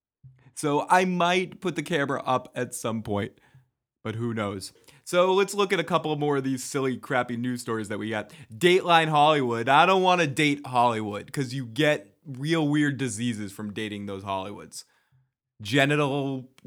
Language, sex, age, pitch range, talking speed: English, male, 20-39, 120-160 Hz, 175 wpm